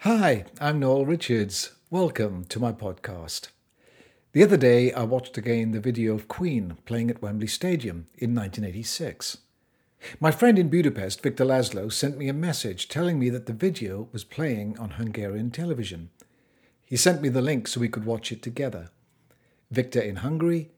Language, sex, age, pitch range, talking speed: English, male, 50-69, 110-145 Hz, 165 wpm